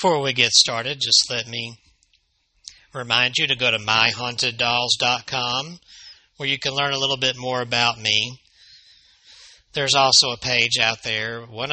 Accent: American